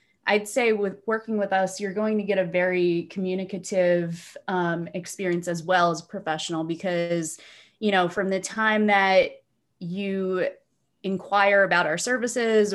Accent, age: American, 20-39